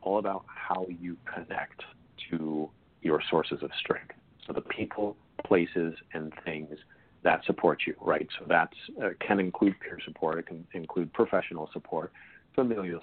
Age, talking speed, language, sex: 40-59, 150 wpm, English, male